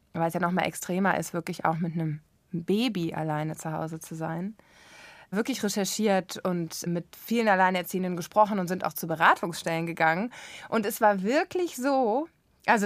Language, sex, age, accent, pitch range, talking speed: German, female, 20-39, German, 175-215 Hz, 170 wpm